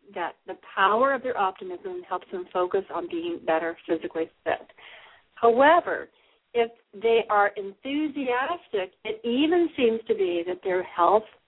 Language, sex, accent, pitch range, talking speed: English, female, American, 185-260 Hz, 140 wpm